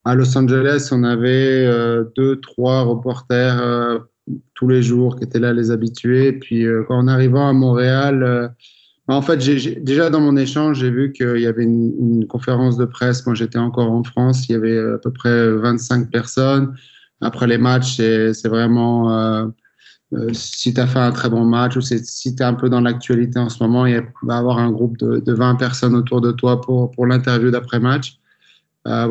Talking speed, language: 215 wpm, French